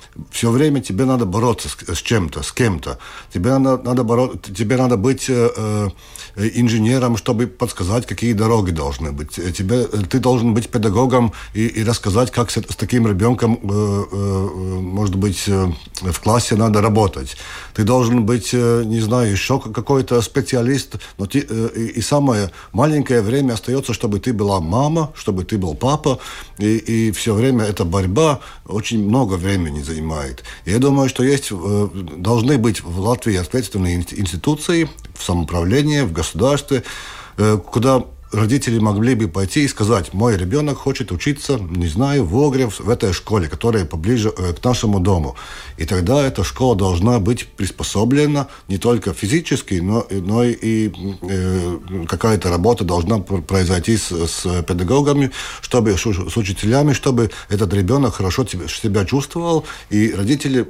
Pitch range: 95-125 Hz